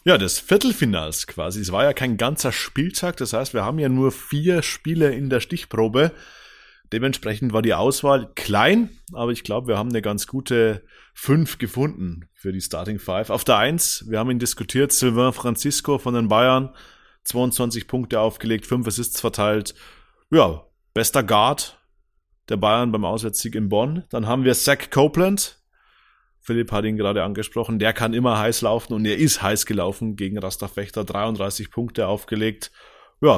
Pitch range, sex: 110-140 Hz, male